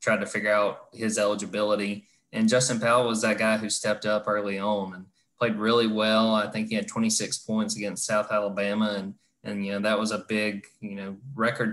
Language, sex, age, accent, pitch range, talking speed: English, male, 20-39, American, 100-120 Hz, 210 wpm